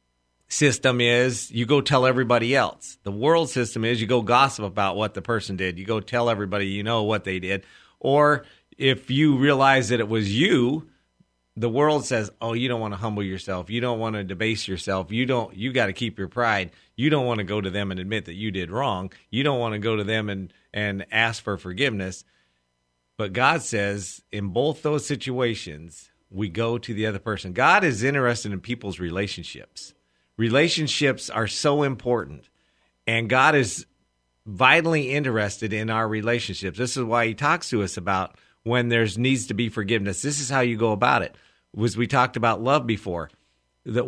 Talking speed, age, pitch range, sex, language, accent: 195 wpm, 40-59, 100-135 Hz, male, English, American